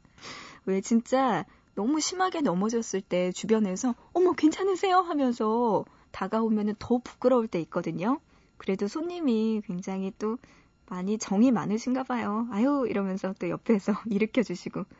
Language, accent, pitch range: Korean, native, 200-275 Hz